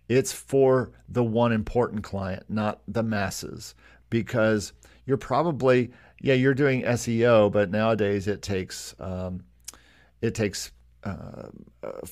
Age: 50-69